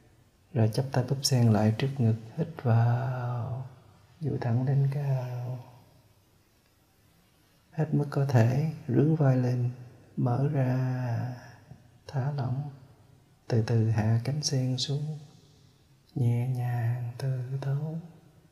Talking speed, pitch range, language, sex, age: 115 wpm, 105-135 Hz, Vietnamese, male, 20-39